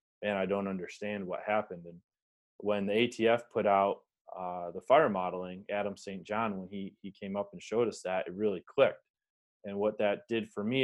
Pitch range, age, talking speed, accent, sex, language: 95-105 Hz, 20-39, 205 wpm, American, male, English